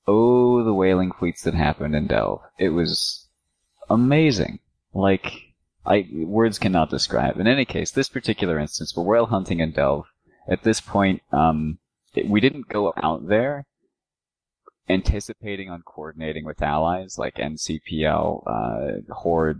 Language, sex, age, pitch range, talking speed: English, male, 30-49, 80-100 Hz, 140 wpm